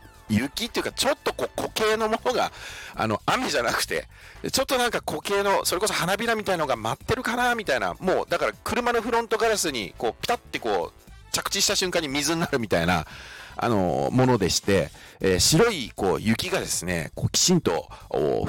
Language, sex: Japanese, male